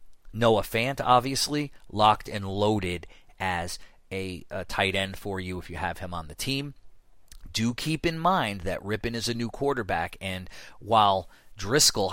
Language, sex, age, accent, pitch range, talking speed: English, male, 30-49, American, 90-110 Hz, 165 wpm